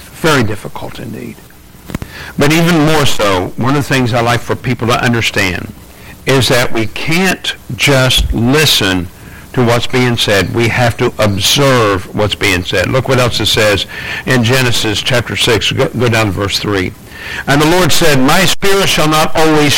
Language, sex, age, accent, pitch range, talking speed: English, male, 60-79, American, 120-155 Hz, 175 wpm